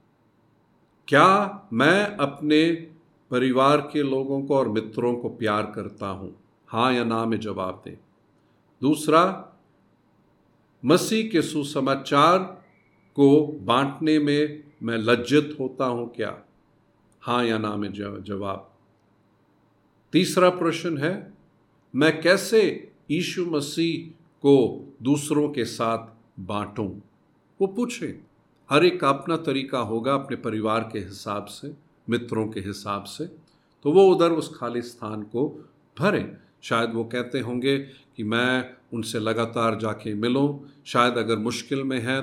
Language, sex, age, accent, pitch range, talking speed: Hindi, male, 50-69, native, 115-150 Hz, 125 wpm